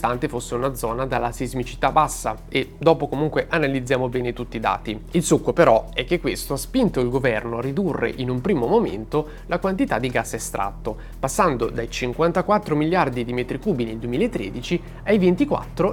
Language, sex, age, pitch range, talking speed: Italian, male, 30-49, 120-175 Hz, 175 wpm